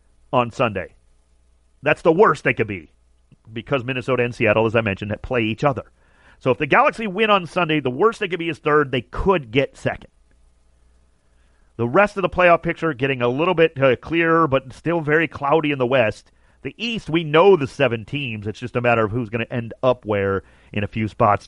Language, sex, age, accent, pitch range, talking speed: English, male, 40-59, American, 90-125 Hz, 215 wpm